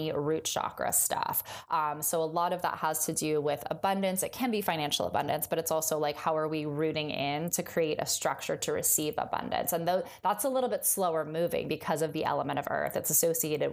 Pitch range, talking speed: 160-190 Hz, 225 wpm